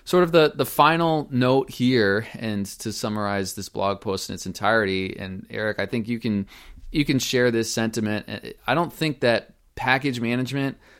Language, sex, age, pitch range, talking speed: English, male, 20-39, 100-120 Hz, 175 wpm